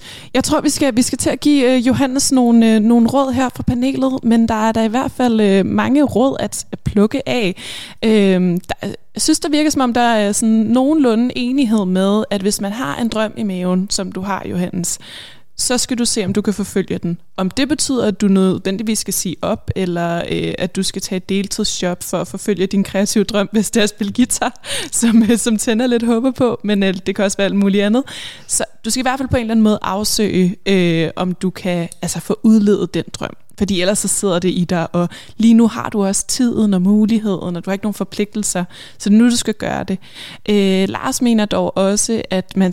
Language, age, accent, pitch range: Danish, 20-39, native, 195-235 Hz